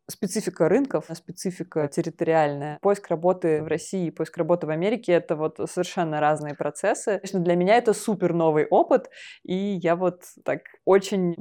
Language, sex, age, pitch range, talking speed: Russian, female, 20-39, 165-195 Hz, 165 wpm